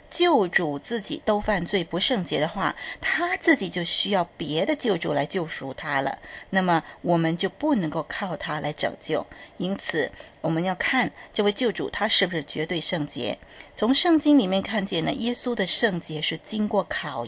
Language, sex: Chinese, female